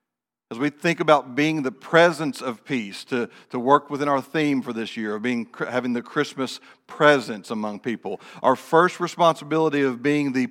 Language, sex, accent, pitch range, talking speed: English, male, American, 125-150 Hz, 175 wpm